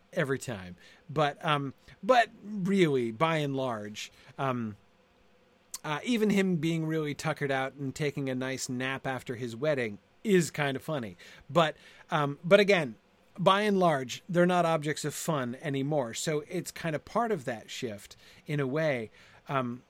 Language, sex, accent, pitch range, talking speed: English, male, American, 120-165 Hz, 165 wpm